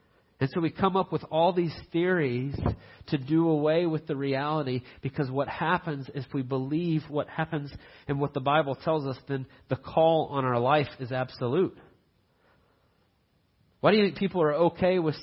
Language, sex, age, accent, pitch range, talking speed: English, male, 40-59, American, 115-160 Hz, 180 wpm